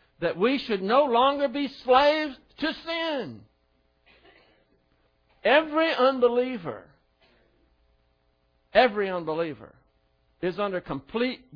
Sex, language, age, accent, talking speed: male, English, 60-79, American, 85 wpm